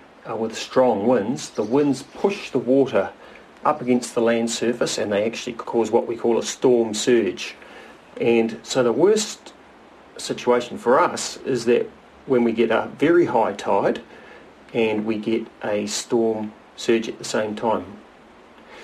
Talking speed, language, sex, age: 155 wpm, English, male, 40-59